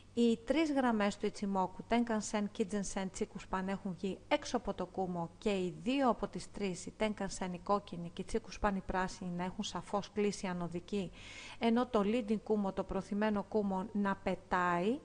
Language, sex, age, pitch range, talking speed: Greek, female, 40-59, 185-225 Hz, 165 wpm